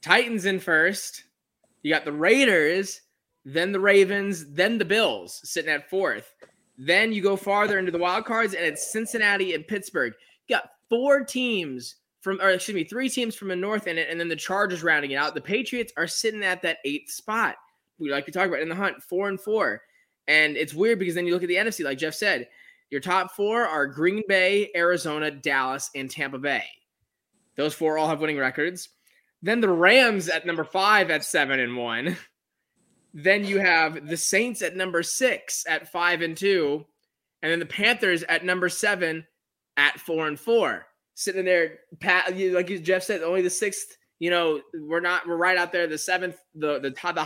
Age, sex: 20-39, male